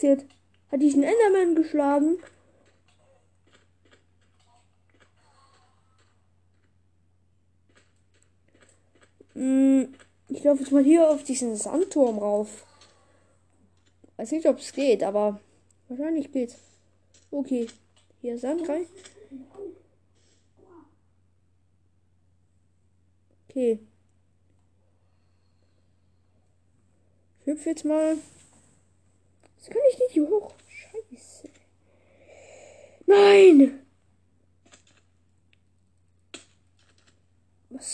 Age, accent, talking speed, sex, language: 10-29, German, 60 wpm, female, German